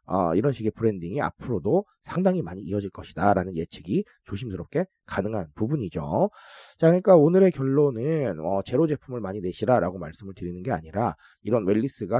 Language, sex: Korean, male